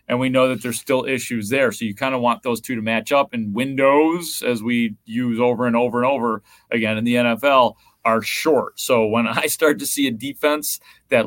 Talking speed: 230 wpm